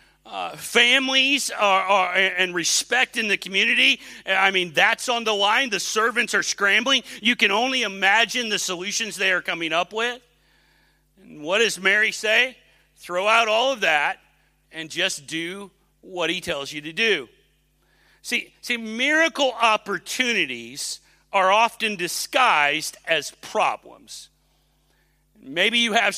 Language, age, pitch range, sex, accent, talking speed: English, 40-59, 170-225 Hz, male, American, 135 wpm